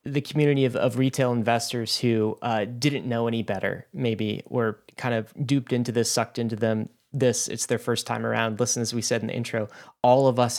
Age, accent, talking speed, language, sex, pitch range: 30-49, American, 215 wpm, English, male, 115-135 Hz